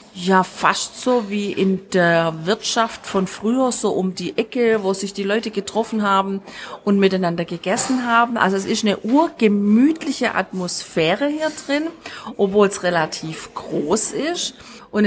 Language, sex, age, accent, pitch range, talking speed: German, female, 40-59, German, 190-255 Hz, 145 wpm